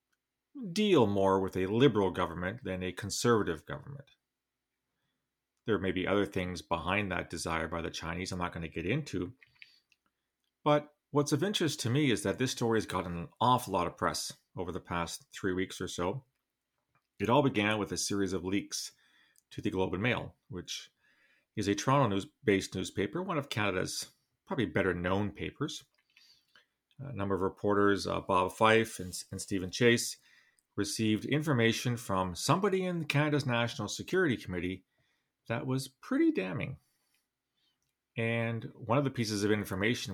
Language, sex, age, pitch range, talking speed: English, male, 40-59, 95-130 Hz, 160 wpm